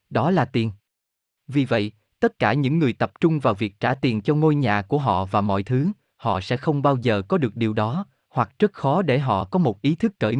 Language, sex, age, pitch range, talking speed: Vietnamese, male, 20-39, 110-160 Hz, 240 wpm